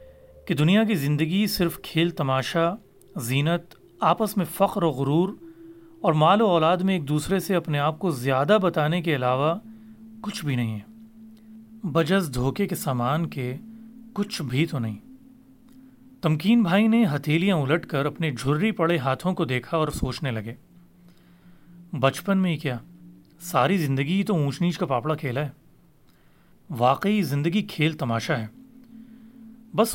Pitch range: 145-200 Hz